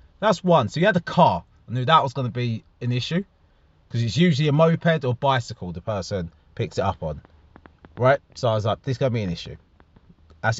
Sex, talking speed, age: male, 240 wpm, 30-49